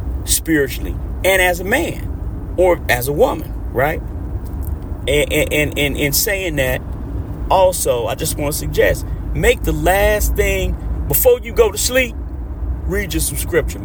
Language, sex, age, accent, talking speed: English, male, 40-59, American, 155 wpm